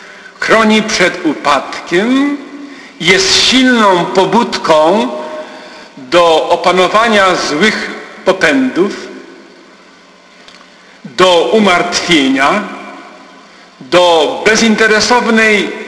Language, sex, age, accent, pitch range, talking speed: Polish, male, 50-69, native, 165-240 Hz, 55 wpm